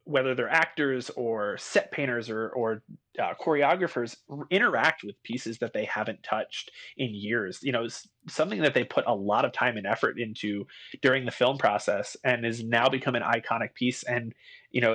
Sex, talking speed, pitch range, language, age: male, 195 wpm, 115-140 Hz, English, 30-49